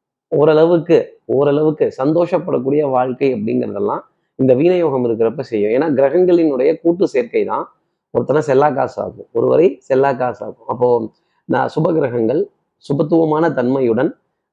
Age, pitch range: 30-49, 130-175 Hz